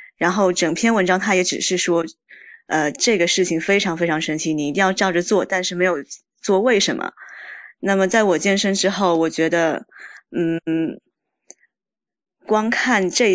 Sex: female